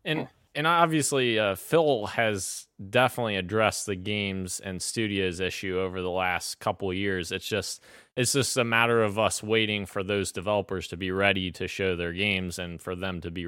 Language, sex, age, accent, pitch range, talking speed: English, male, 20-39, American, 90-110 Hz, 190 wpm